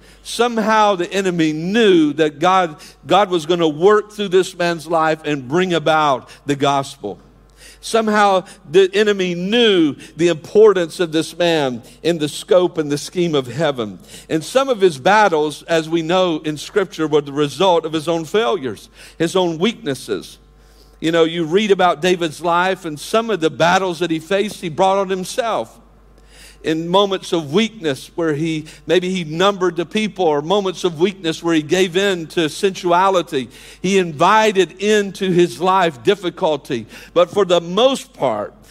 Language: English